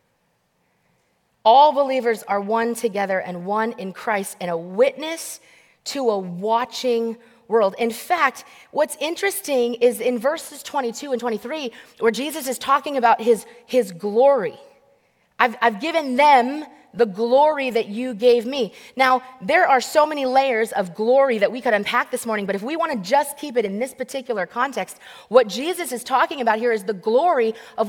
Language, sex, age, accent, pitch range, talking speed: English, female, 30-49, American, 230-285 Hz, 170 wpm